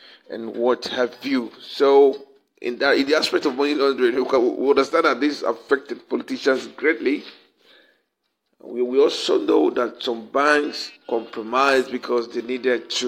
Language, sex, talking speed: English, male, 145 wpm